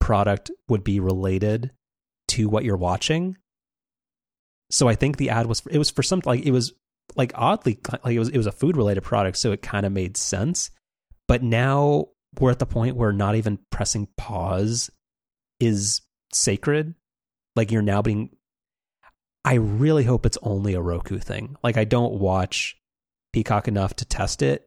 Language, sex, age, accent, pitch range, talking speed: English, male, 30-49, American, 100-125 Hz, 175 wpm